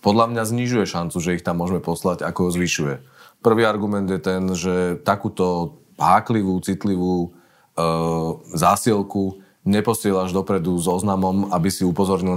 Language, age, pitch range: Slovak, 30-49, 90-105 Hz